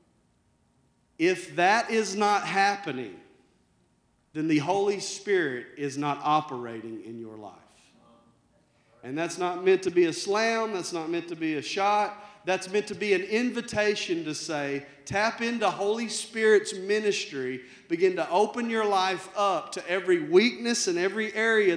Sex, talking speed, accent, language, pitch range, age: male, 150 wpm, American, English, 165-220 Hz, 40-59